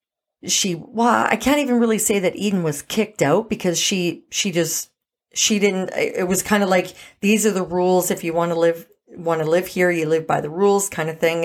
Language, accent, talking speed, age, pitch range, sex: English, American, 230 wpm, 40-59, 175-220 Hz, female